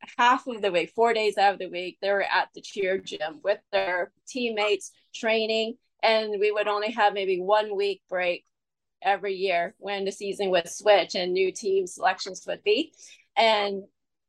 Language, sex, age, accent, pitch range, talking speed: English, female, 20-39, American, 195-230 Hz, 180 wpm